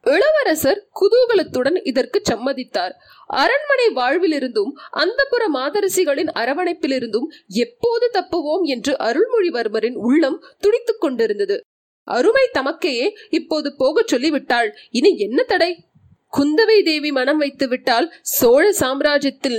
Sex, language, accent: female, Tamil, native